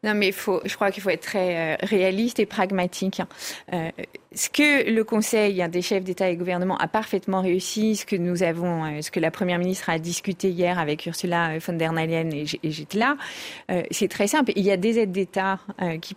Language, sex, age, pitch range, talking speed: French, female, 30-49, 180-235 Hz, 220 wpm